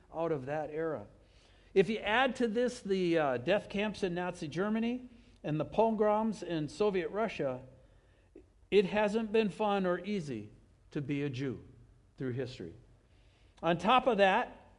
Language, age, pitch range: English, 60-79, 130-200 Hz